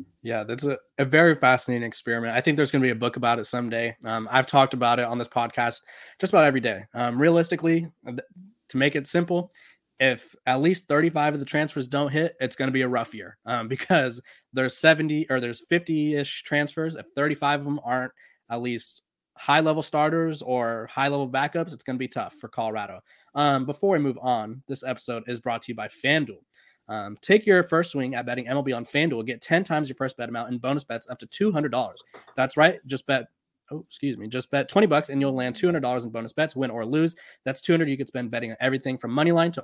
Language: English